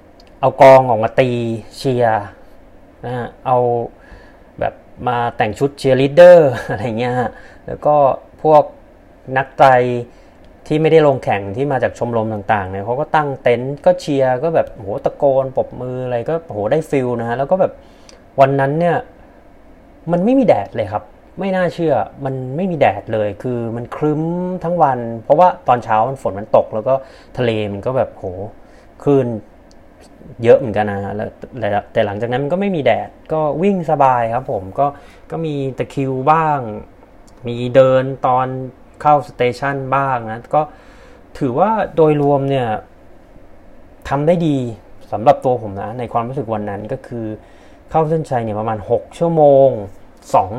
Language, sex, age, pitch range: Thai, male, 30-49, 110-145 Hz